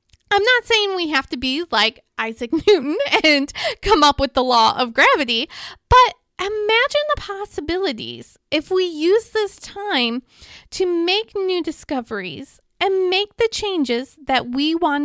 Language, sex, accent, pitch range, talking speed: English, female, American, 250-370 Hz, 150 wpm